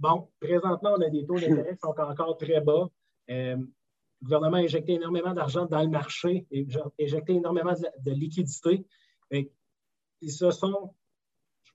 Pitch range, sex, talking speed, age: 140-170 Hz, male, 165 wpm, 30-49